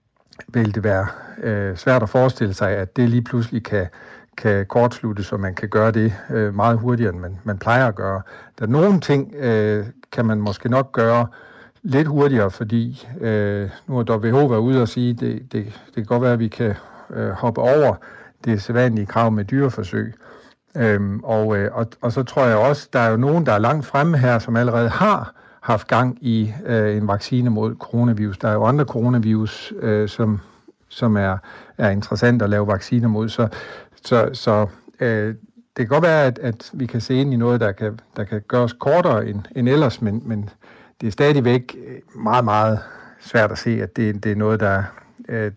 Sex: male